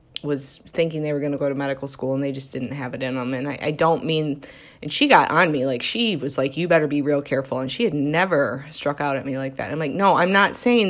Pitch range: 140-170 Hz